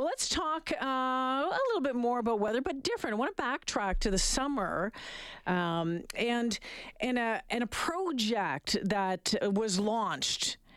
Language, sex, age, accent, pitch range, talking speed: English, female, 40-59, American, 185-250 Hz, 150 wpm